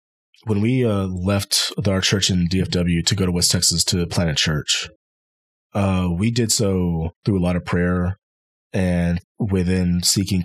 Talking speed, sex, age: 160 wpm, male, 20-39